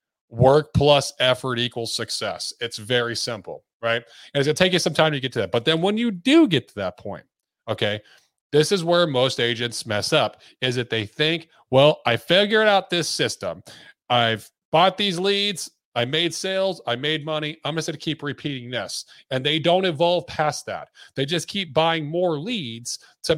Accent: American